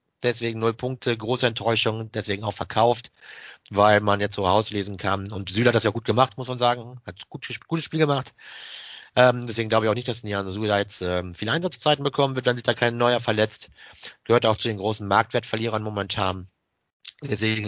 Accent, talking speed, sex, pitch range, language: German, 195 wpm, male, 100-115 Hz, German